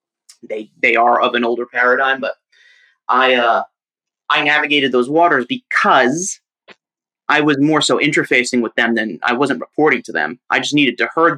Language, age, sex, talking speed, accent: English, 30-49, male, 175 wpm, American